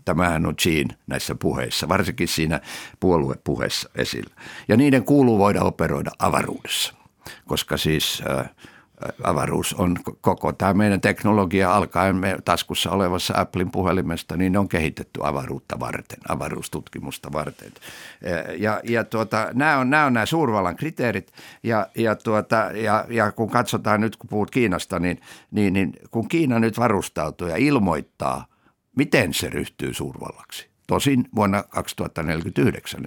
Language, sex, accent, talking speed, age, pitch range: Finnish, male, native, 130 wpm, 60-79, 90-115 Hz